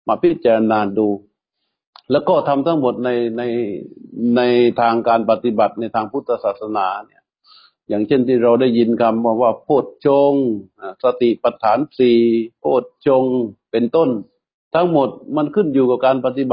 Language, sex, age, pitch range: Thai, male, 60-79, 115-140 Hz